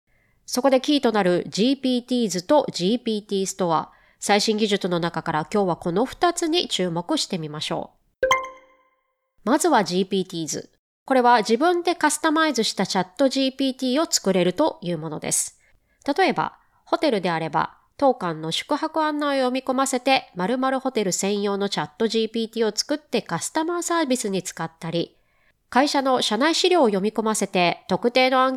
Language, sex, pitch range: Japanese, female, 190-290 Hz